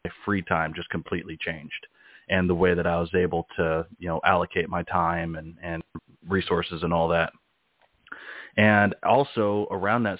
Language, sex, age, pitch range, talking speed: English, male, 30-49, 85-100 Hz, 170 wpm